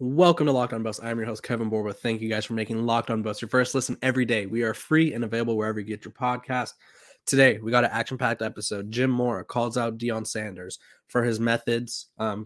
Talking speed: 235 wpm